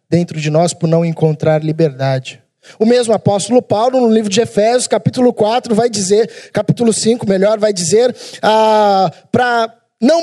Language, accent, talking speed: Portuguese, Brazilian, 160 wpm